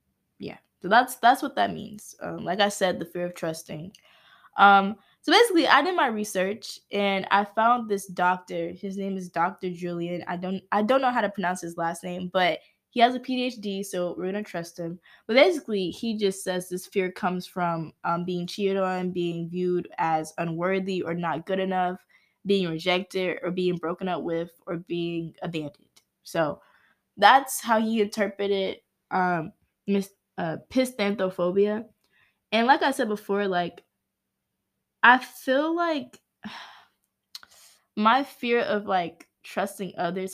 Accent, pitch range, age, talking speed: American, 175-210 Hz, 10-29, 160 wpm